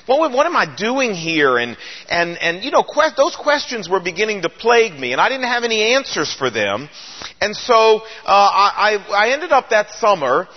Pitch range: 170-235 Hz